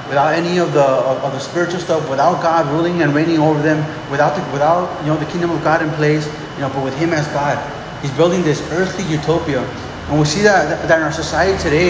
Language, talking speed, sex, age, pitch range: English, 235 wpm, male, 30-49, 150-180 Hz